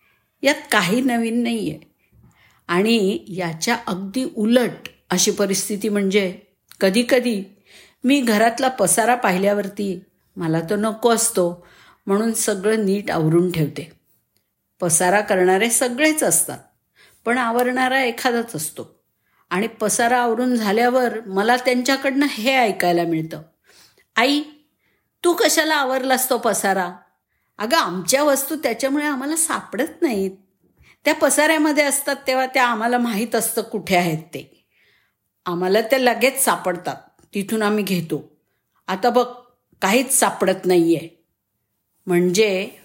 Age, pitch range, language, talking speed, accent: 50-69, 180-250 Hz, Marathi, 115 wpm, native